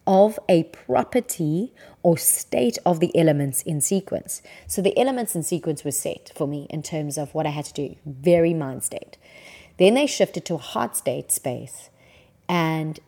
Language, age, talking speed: English, 30-49, 180 wpm